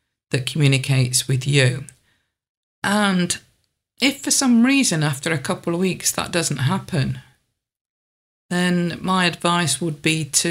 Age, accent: 40-59, British